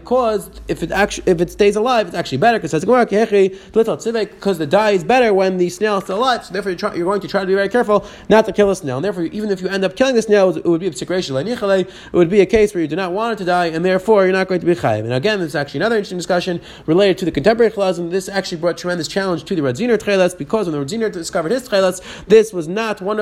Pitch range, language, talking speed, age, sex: 180-215 Hz, English, 280 wpm, 30-49, male